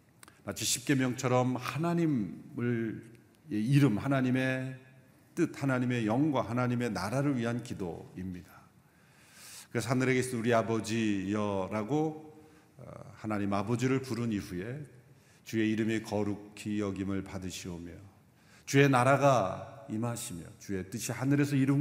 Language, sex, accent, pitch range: Korean, male, native, 105-140 Hz